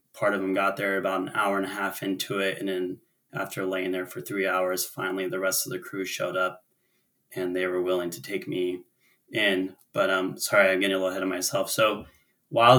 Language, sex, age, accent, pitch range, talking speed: English, male, 20-39, American, 95-100 Hz, 235 wpm